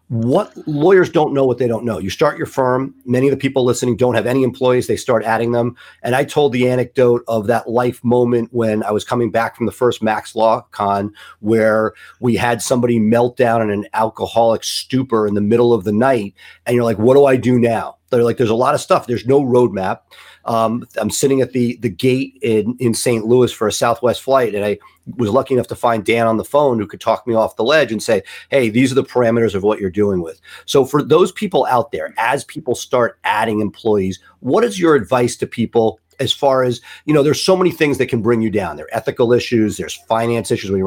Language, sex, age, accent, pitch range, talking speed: English, male, 40-59, American, 110-130 Hz, 240 wpm